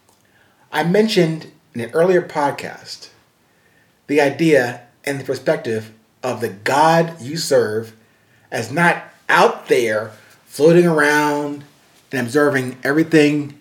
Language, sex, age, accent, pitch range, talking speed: English, male, 40-59, American, 130-170 Hz, 110 wpm